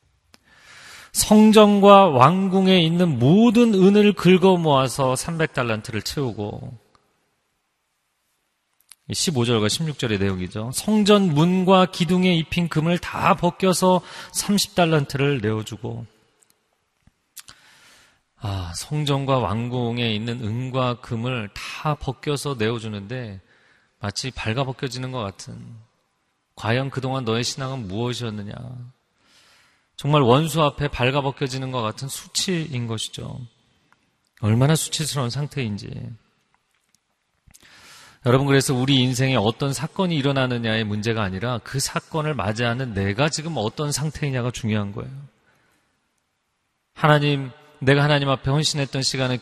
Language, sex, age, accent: Korean, male, 40-59, native